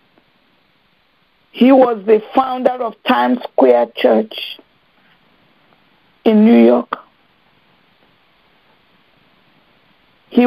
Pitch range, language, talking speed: 230-295 Hz, English, 70 wpm